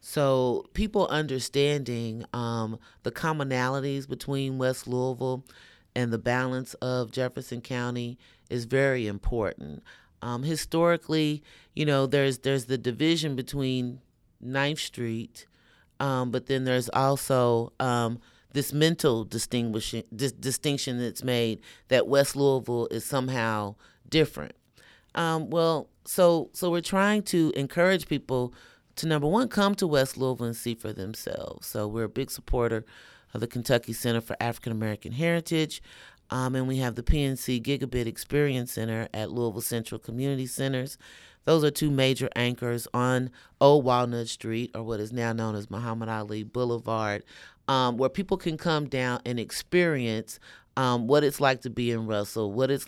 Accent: American